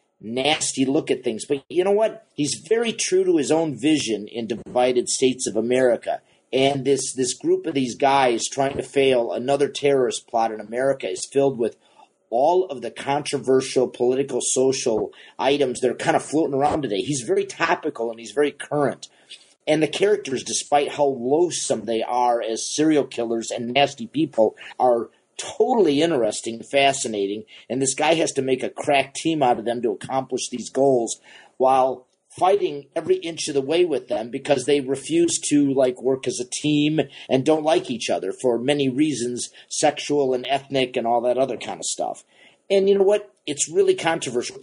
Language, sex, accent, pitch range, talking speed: English, male, American, 125-160 Hz, 185 wpm